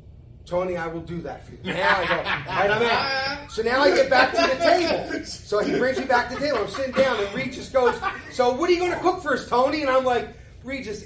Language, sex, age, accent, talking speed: English, male, 30-49, American, 260 wpm